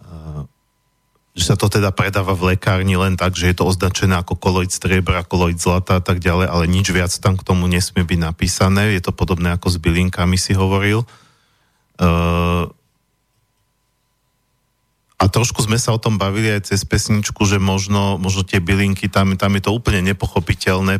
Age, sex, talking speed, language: 40-59, male, 170 wpm, Slovak